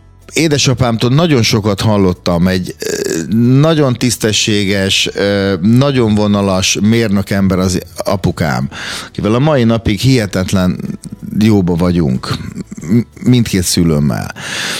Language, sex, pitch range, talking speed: Hungarian, male, 95-125 Hz, 85 wpm